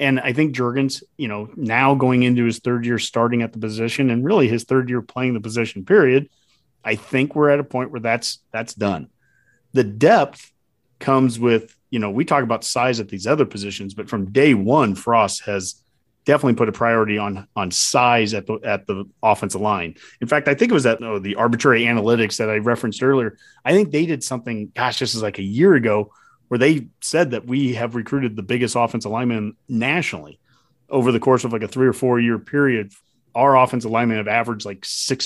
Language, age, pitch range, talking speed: English, 30-49, 110-130 Hz, 215 wpm